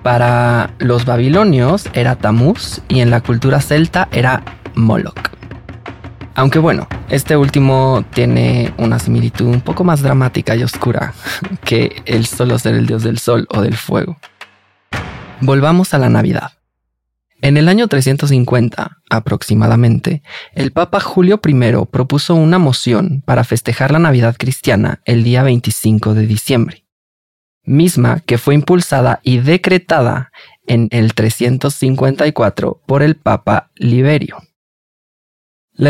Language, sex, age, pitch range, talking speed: Spanish, male, 20-39, 115-140 Hz, 125 wpm